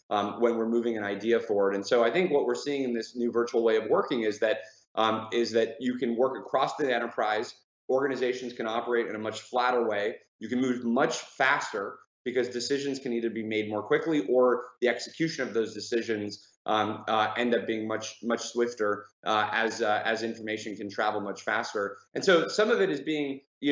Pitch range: 110-135 Hz